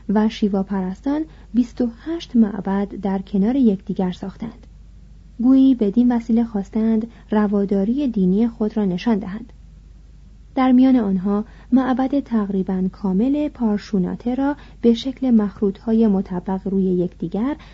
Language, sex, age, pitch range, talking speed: Persian, female, 30-49, 195-250 Hz, 110 wpm